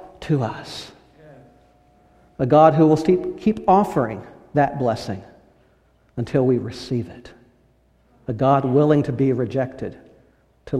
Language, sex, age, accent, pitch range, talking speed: English, male, 60-79, American, 120-150 Hz, 115 wpm